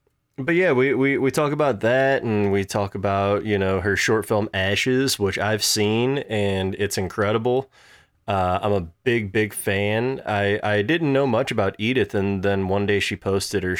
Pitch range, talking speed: 100-120 Hz, 190 wpm